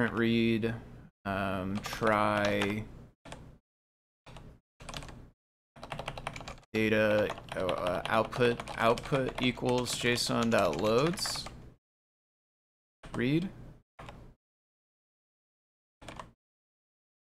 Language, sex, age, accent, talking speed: English, male, 20-39, American, 40 wpm